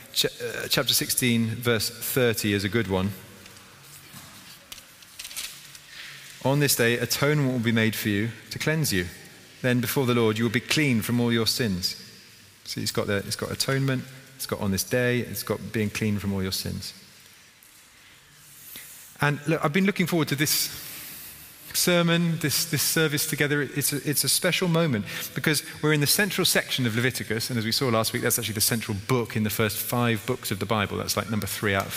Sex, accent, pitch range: male, British, 110-145 Hz